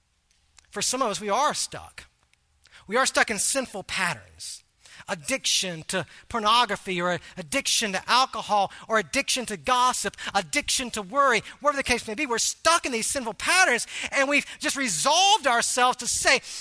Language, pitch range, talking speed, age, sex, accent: English, 185-285 Hz, 165 wpm, 40-59, male, American